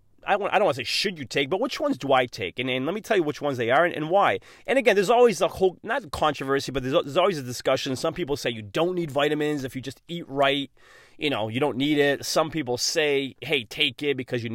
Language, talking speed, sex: English, 275 wpm, male